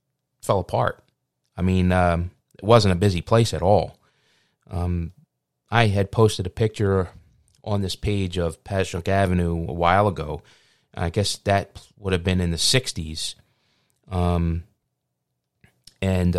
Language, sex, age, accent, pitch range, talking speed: English, male, 30-49, American, 90-105 Hz, 140 wpm